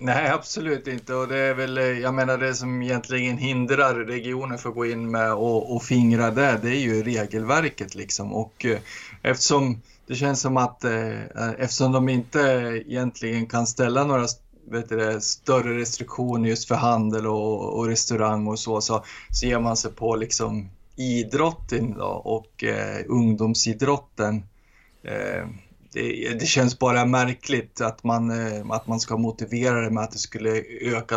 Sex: male